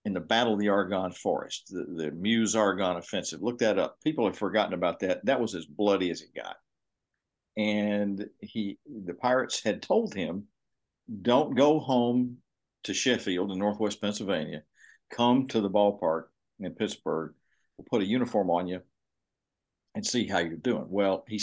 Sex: male